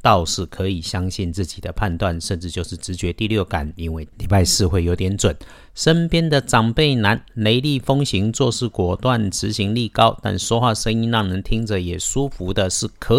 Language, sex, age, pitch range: Chinese, male, 50-69, 85-110 Hz